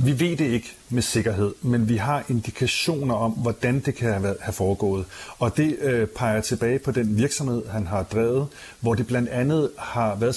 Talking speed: 185 wpm